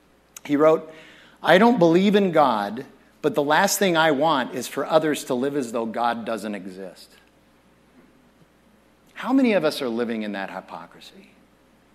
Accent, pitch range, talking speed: American, 115-160 Hz, 160 wpm